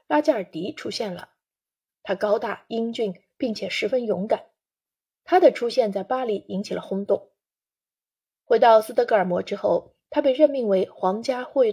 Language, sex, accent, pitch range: Chinese, female, native, 195-275 Hz